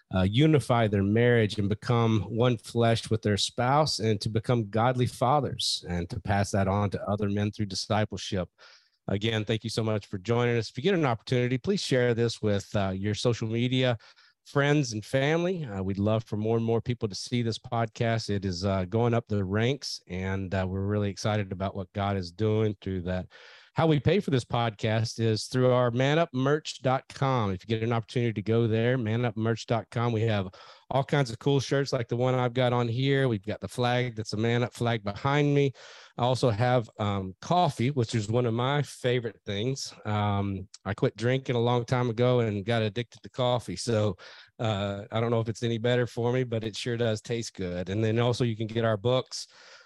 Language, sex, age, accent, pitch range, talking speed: English, male, 40-59, American, 105-125 Hz, 210 wpm